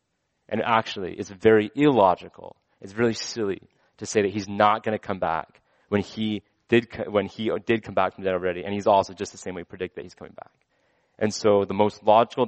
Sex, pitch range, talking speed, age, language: male, 95-115 Hz, 210 wpm, 20-39, English